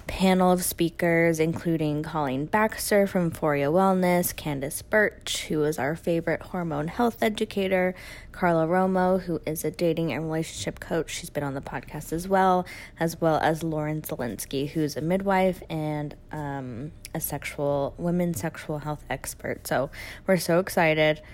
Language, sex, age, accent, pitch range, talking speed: English, female, 10-29, American, 150-190 Hz, 150 wpm